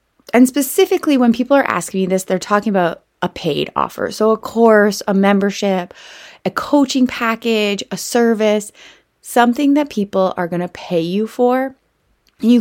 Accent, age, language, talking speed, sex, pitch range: American, 20-39, English, 160 wpm, female, 175-235 Hz